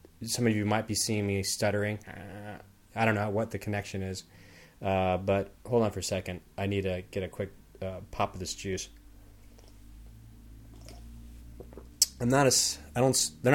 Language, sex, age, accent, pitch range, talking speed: English, male, 30-49, American, 95-120 Hz, 175 wpm